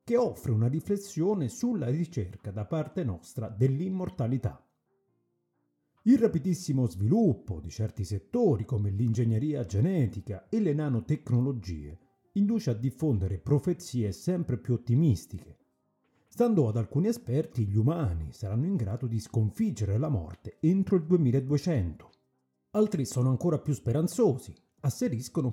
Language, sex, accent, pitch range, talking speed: Italian, male, native, 110-175 Hz, 120 wpm